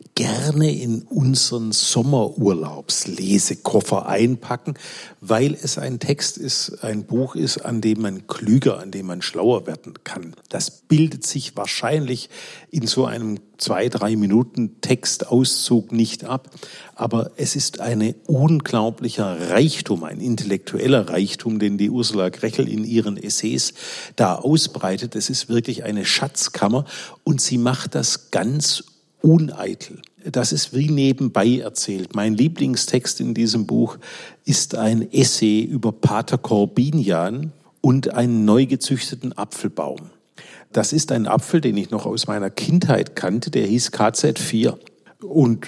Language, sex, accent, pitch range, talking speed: German, male, German, 110-145 Hz, 135 wpm